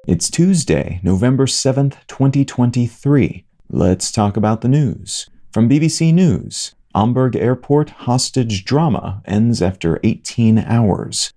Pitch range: 100-130 Hz